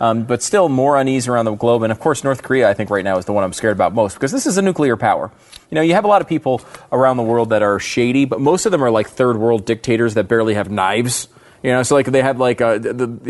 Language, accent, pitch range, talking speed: English, American, 110-140 Hz, 290 wpm